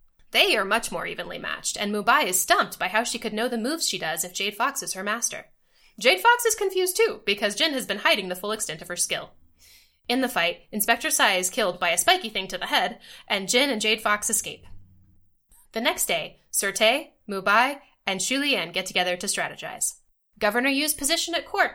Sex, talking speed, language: female, 220 wpm, English